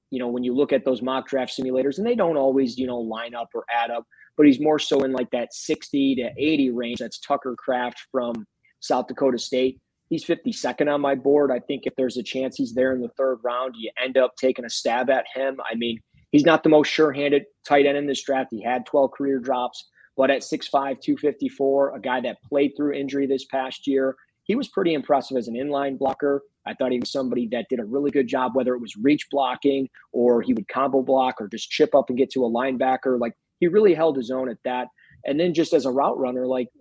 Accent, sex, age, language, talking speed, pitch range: American, male, 20-39, English, 245 wpm, 125-145 Hz